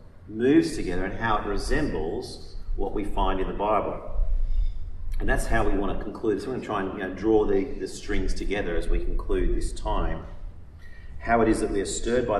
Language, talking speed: English, 220 wpm